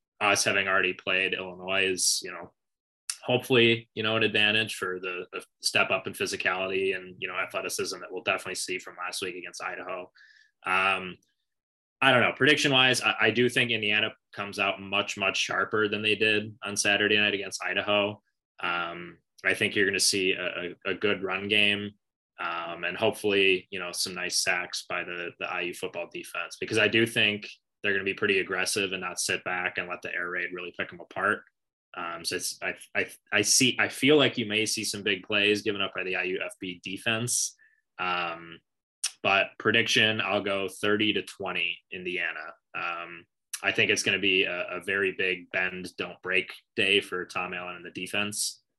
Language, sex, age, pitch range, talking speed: English, male, 20-39, 95-115 Hz, 195 wpm